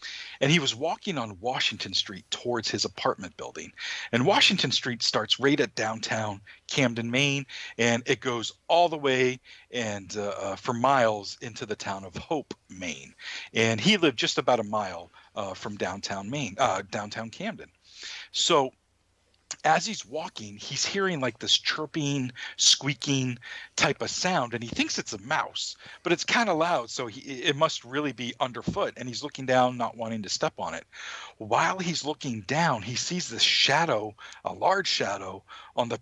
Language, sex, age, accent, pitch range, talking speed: English, male, 50-69, American, 115-150 Hz, 175 wpm